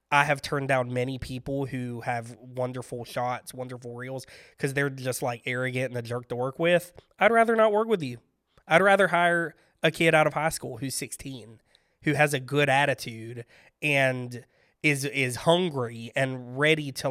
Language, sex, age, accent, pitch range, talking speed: English, male, 20-39, American, 130-175 Hz, 180 wpm